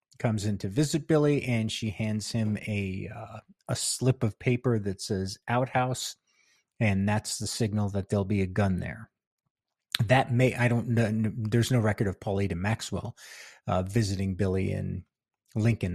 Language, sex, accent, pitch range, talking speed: English, male, American, 105-130 Hz, 170 wpm